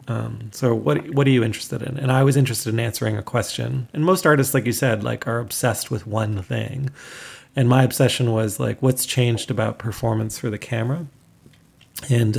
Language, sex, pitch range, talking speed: English, male, 105-130 Hz, 200 wpm